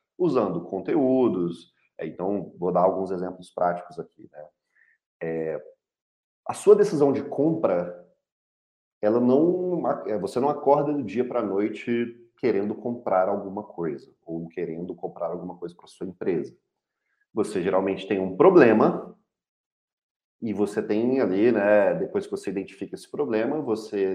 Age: 40-59